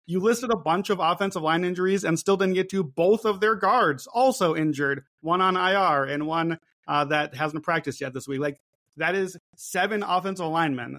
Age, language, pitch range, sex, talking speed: 30-49, English, 145-175 Hz, male, 200 wpm